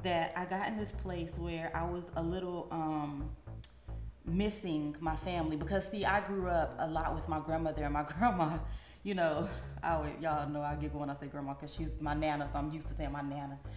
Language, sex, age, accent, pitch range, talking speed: English, female, 20-39, American, 155-190 Hz, 220 wpm